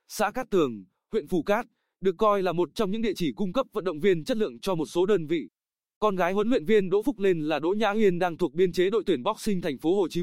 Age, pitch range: 20-39, 165-205 Hz